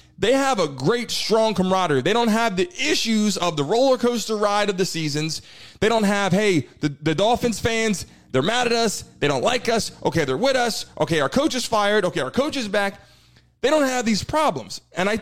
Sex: male